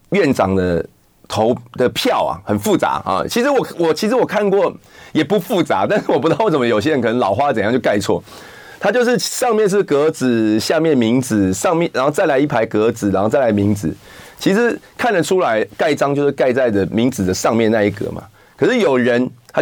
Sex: male